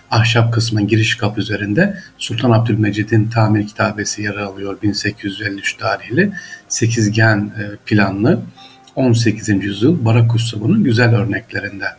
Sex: male